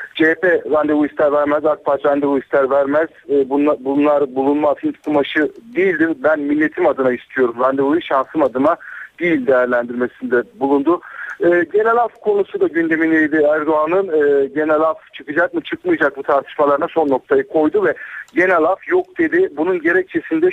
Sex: male